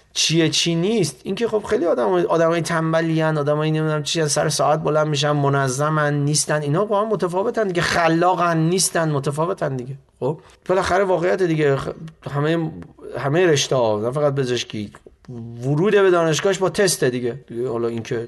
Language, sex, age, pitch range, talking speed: English, male, 30-49, 120-170 Hz, 160 wpm